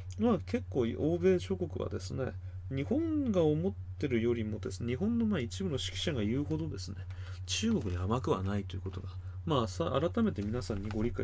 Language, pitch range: Japanese, 95-120 Hz